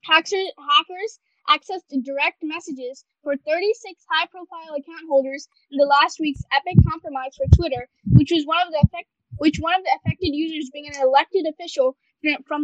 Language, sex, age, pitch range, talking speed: English, female, 10-29, 285-360 Hz, 145 wpm